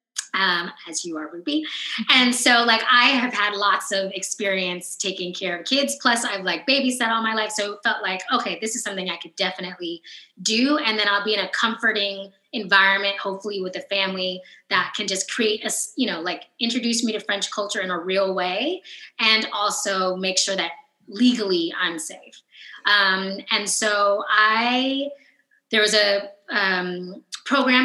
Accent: American